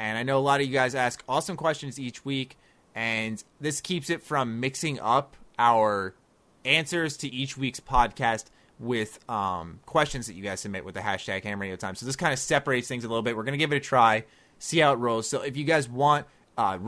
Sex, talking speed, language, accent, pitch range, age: male, 230 wpm, English, American, 105-135 Hz, 20-39